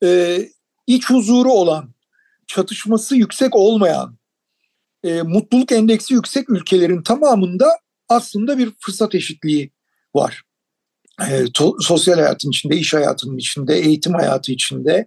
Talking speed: 115 wpm